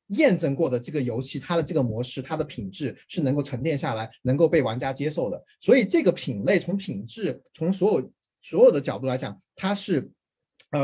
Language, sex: Chinese, male